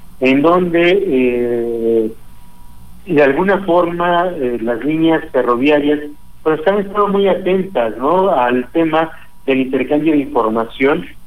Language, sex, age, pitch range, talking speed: Spanish, male, 50-69, 120-170 Hz, 110 wpm